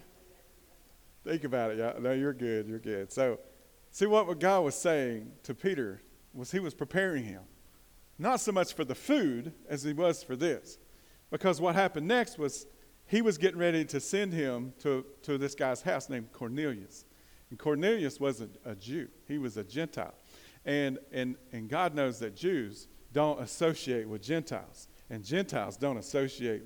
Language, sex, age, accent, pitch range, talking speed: English, male, 40-59, American, 135-185 Hz, 170 wpm